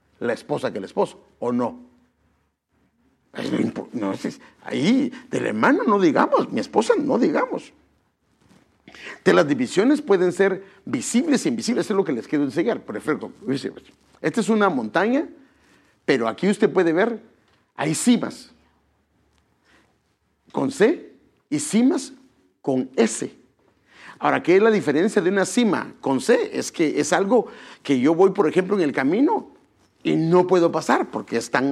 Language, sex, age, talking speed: English, male, 50-69, 150 wpm